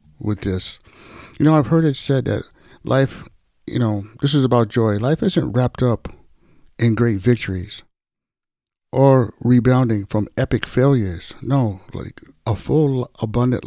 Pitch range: 105-130 Hz